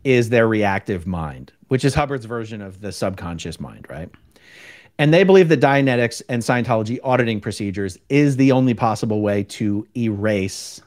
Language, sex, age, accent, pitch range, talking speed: English, male, 40-59, American, 105-140 Hz, 160 wpm